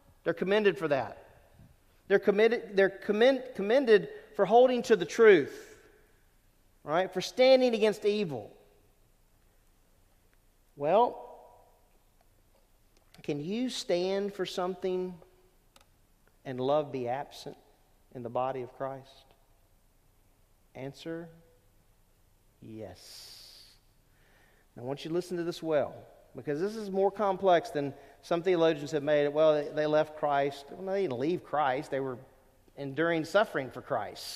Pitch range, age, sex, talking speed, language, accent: 125-200 Hz, 40-59, male, 120 wpm, English, American